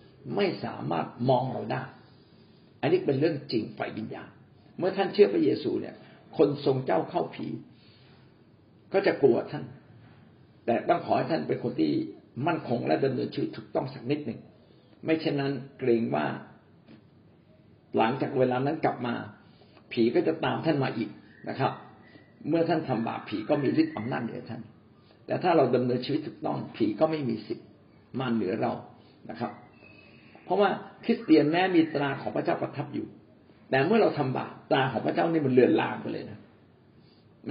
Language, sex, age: Thai, male, 60-79